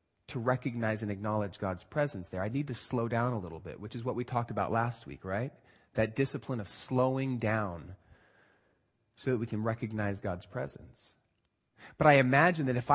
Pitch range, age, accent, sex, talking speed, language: 105-140 Hz, 30-49, American, male, 190 wpm, English